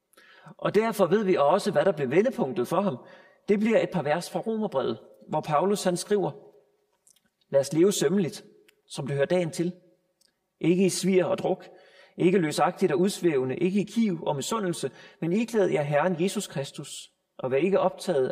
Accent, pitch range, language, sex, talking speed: native, 170-190 Hz, Danish, male, 185 wpm